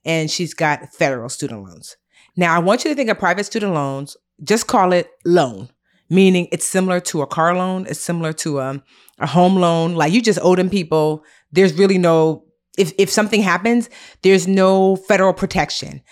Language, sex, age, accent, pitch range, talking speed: English, female, 30-49, American, 155-200 Hz, 190 wpm